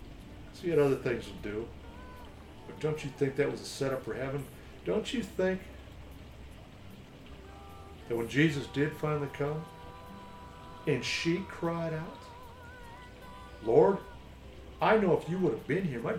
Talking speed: 145 wpm